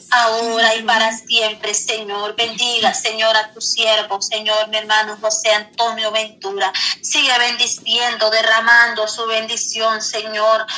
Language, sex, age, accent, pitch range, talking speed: Spanish, female, 30-49, American, 220-250 Hz, 120 wpm